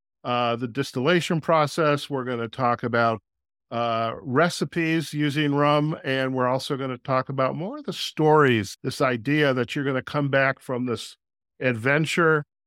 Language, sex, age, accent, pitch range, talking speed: English, male, 50-69, American, 120-145 Hz, 165 wpm